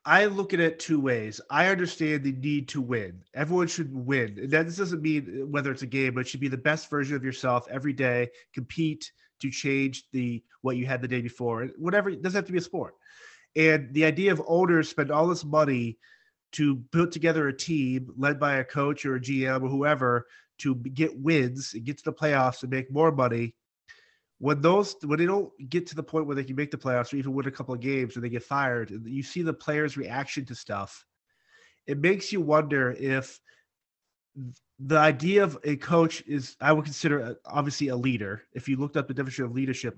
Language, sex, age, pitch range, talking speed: English, male, 30-49, 130-160 Hz, 220 wpm